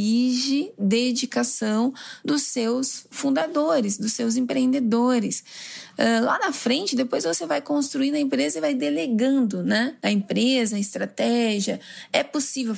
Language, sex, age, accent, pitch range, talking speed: Portuguese, female, 20-39, Brazilian, 215-255 Hz, 125 wpm